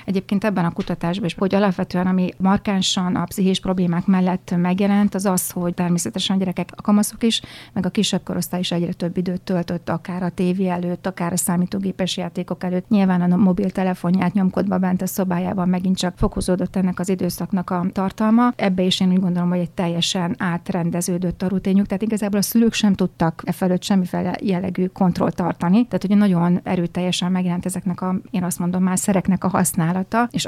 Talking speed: 185 wpm